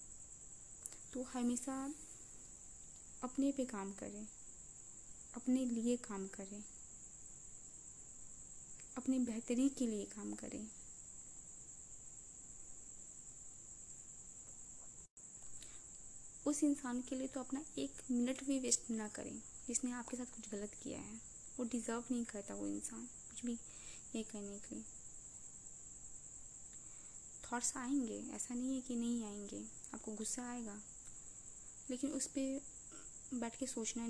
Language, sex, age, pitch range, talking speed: Hindi, female, 20-39, 220-250 Hz, 115 wpm